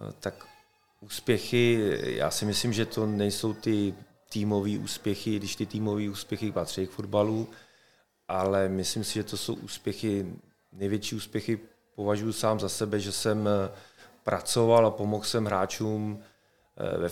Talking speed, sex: 135 wpm, male